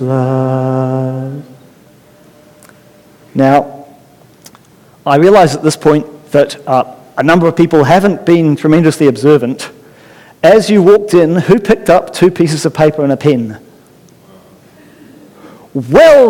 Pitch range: 150-210 Hz